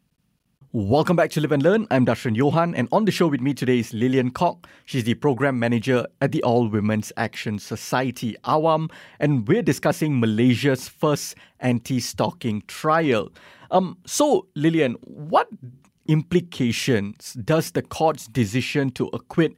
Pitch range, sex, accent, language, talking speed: 120-155 Hz, male, Malaysian, English, 145 wpm